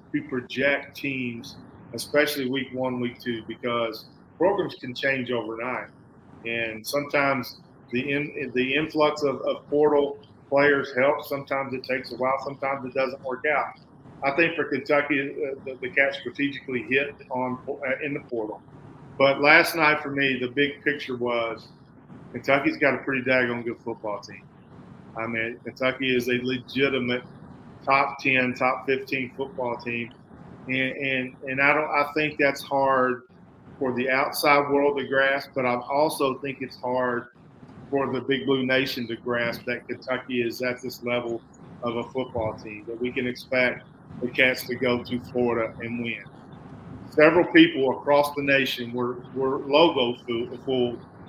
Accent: American